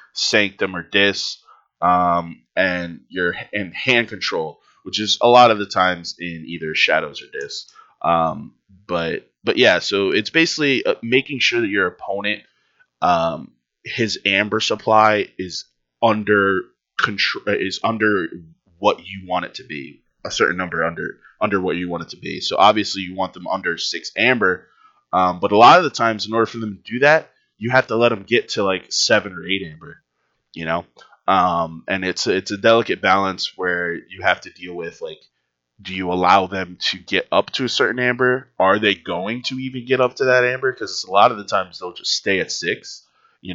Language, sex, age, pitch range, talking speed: English, male, 20-39, 90-115 Hz, 195 wpm